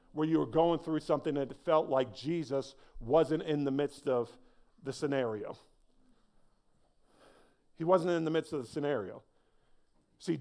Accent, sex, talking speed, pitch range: American, male, 150 wpm, 125-150 Hz